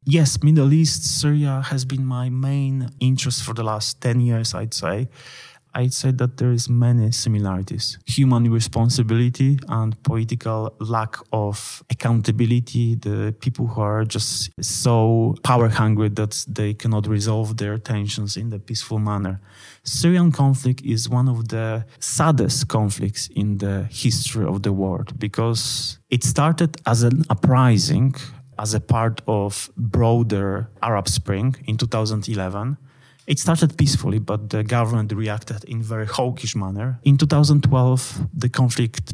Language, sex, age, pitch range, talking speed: Hungarian, male, 30-49, 110-130 Hz, 145 wpm